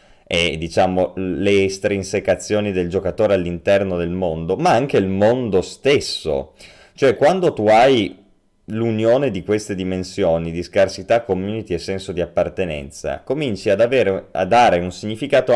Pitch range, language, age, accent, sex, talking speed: 90-120 Hz, Italian, 30-49, native, male, 140 wpm